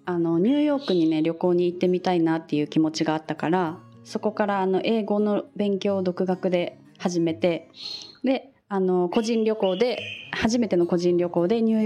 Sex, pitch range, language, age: female, 165-220 Hz, Japanese, 20-39